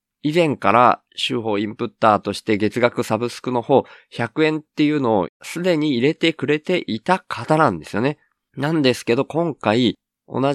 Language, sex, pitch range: Japanese, male, 95-130 Hz